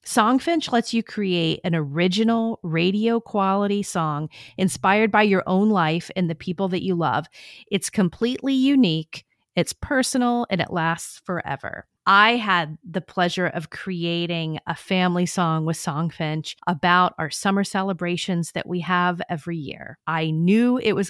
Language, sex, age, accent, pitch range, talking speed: English, female, 40-59, American, 170-210 Hz, 150 wpm